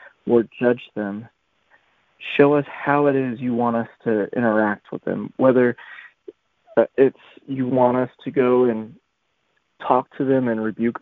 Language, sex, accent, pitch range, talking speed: English, male, American, 115-135 Hz, 150 wpm